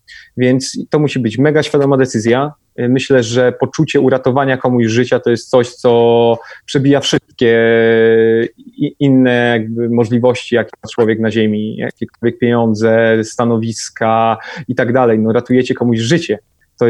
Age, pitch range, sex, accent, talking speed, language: 30-49, 115-130 Hz, male, native, 130 wpm, Polish